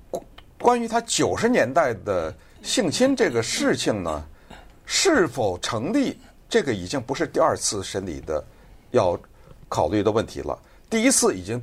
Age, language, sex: 60-79, Chinese, male